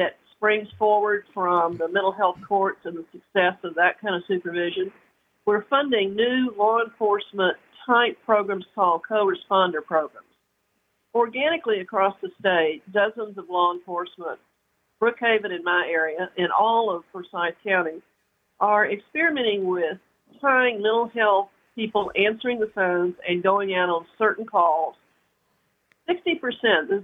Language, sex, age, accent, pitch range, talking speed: English, female, 50-69, American, 175-215 Hz, 130 wpm